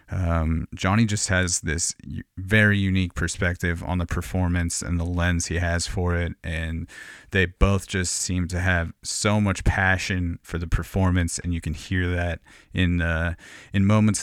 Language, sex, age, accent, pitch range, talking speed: English, male, 30-49, American, 90-105 Hz, 170 wpm